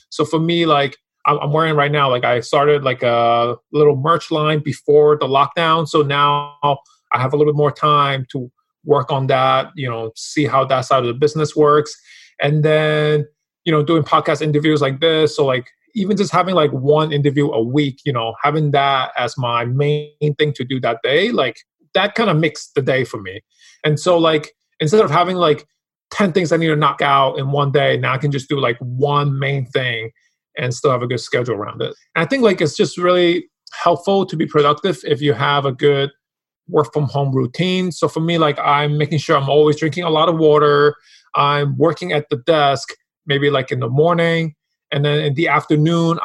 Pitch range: 140-160 Hz